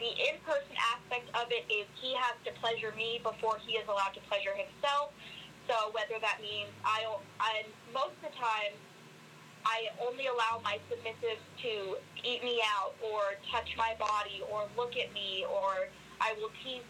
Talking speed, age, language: 175 wpm, 20-39, English